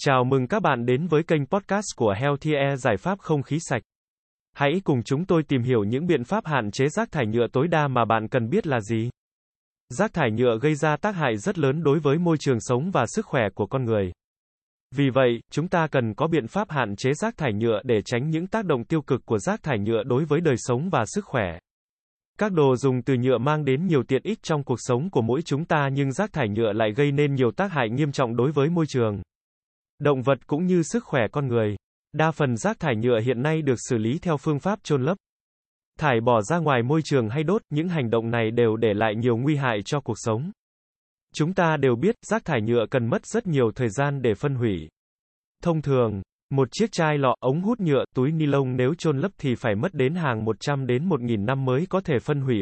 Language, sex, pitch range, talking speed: Vietnamese, male, 120-155 Hz, 240 wpm